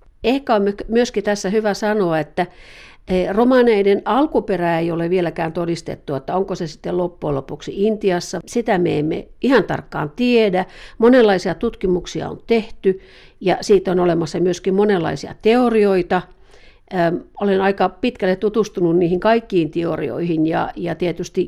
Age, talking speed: 50-69, 130 wpm